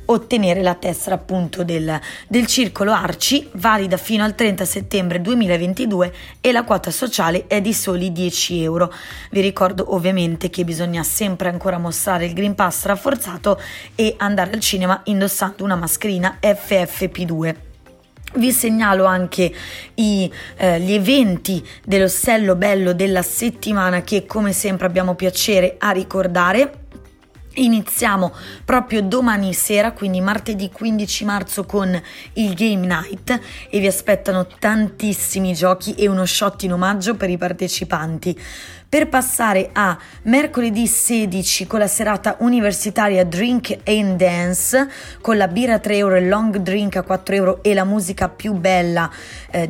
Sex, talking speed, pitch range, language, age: female, 140 wpm, 185-225 Hz, Italian, 20-39